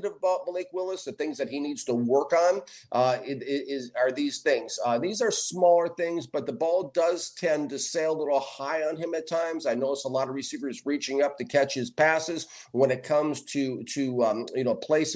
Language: English